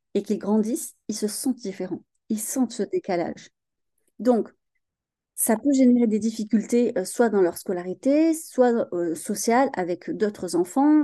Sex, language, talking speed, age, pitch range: female, French, 150 wpm, 30-49, 200-260 Hz